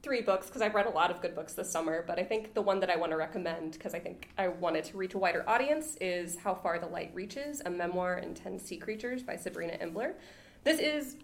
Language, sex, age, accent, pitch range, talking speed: English, female, 20-39, American, 175-205 Hz, 260 wpm